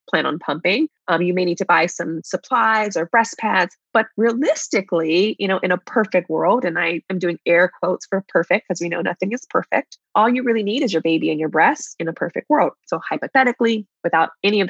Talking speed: 225 wpm